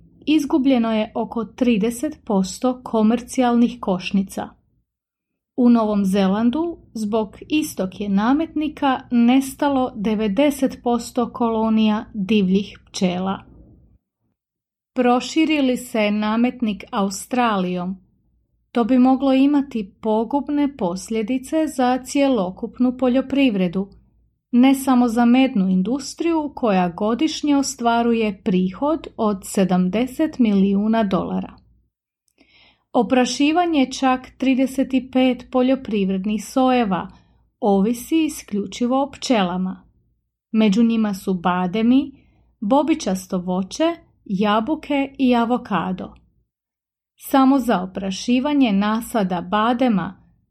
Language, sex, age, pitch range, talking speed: English, female, 30-49, 205-265 Hz, 80 wpm